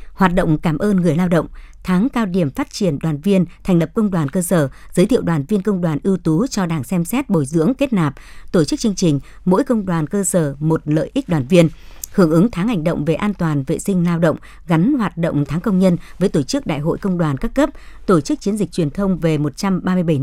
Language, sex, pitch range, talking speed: Vietnamese, male, 160-200 Hz, 250 wpm